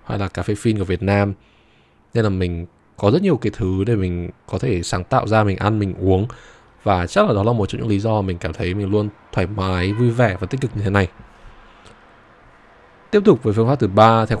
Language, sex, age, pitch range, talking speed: Vietnamese, male, 20-39, 95-115 Hz, 245 wpm